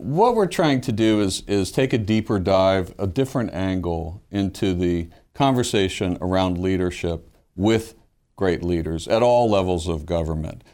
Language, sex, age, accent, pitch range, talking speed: English, male, 50-69, American, 95-120 Hz, 150 wpm